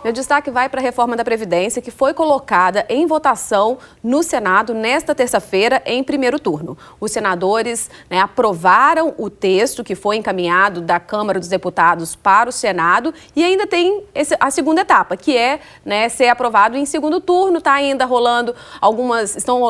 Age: 30-49